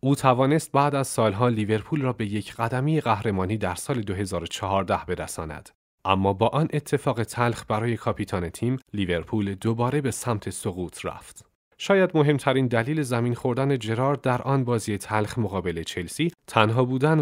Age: 30-49